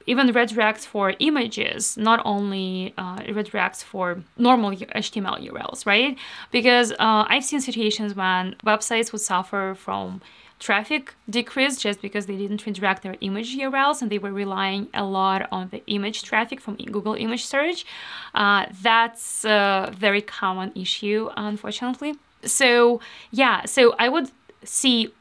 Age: 20-39